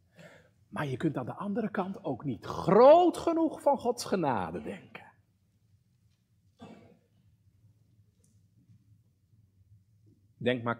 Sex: male